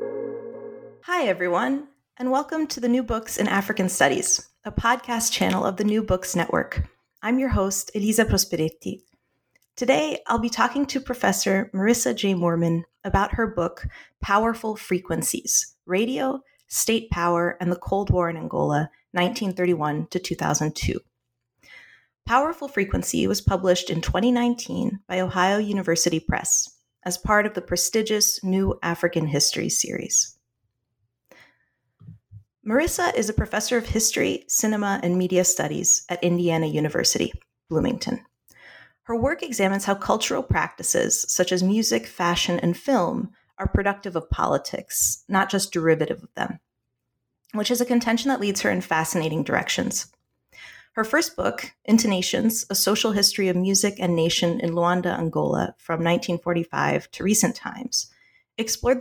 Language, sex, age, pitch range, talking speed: English, female, 30-49, 175-230 Hz, 135 wpm